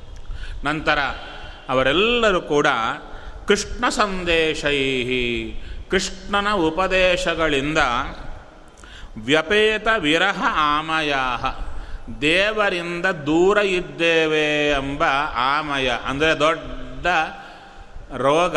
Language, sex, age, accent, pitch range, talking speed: Kannada, male, 30-49, native, 140-170 Hz, 60 wpm